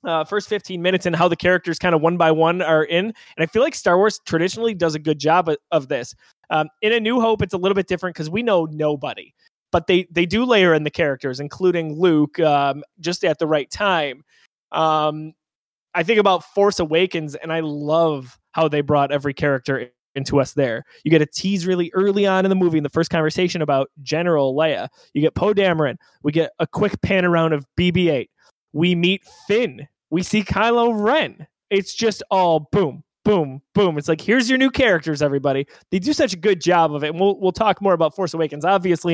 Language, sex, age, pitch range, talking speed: English, male, 20-39, 155-205 Hz, 220 wpm